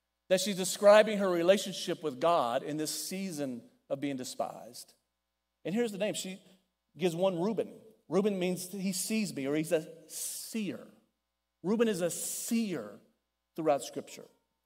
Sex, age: male, 40-59